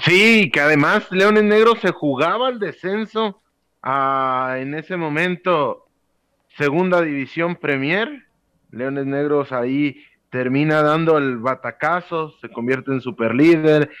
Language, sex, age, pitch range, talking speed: Spanish, male, 30-49, 130-170 Hz, 115 wpm